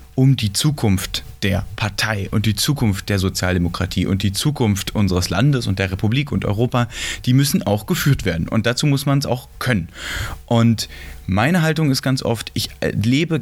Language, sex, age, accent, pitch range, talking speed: German, male, 30-49, German, 100-135 Hz, 180 wpm